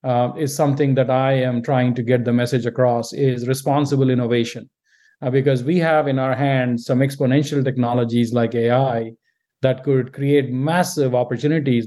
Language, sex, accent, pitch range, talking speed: English, male, Indian, 125-145 Hz, 160 wpm